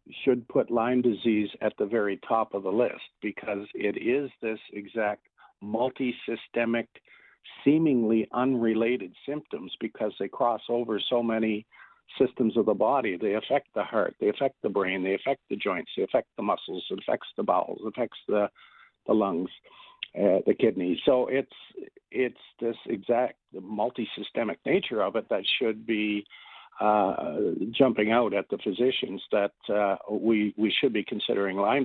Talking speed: 160 wpm